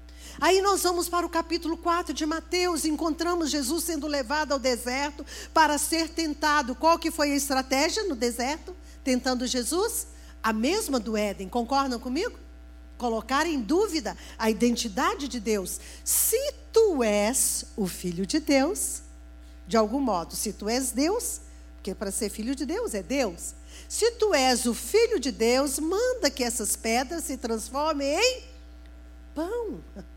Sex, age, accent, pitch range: female, 50-69, Brazilian, 210-305 Hz